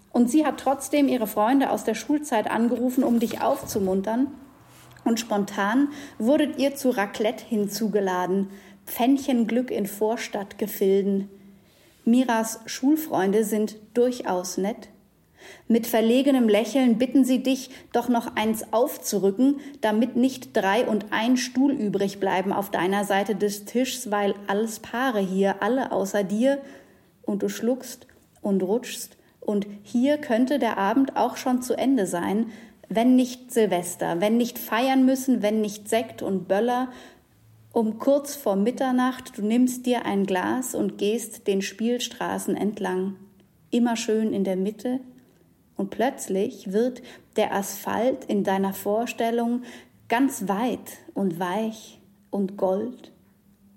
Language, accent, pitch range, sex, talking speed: English, German, 200-255 Hz, female, 135 wpm